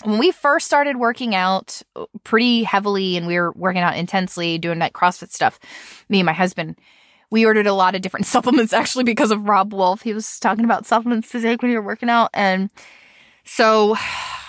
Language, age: English, 20-39